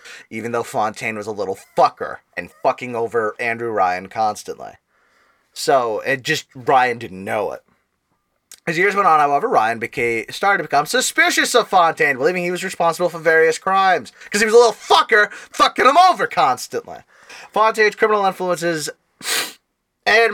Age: 20-39